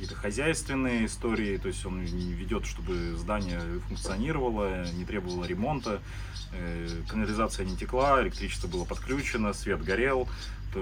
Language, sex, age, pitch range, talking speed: Russian, male, 30-49, 100-120 Hz, 110 wpm